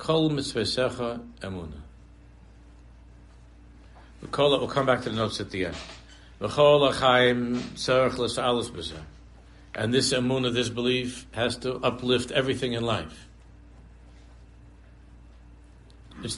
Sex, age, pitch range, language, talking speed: male, 60-79, 75-125 Hz, English, 90 wpm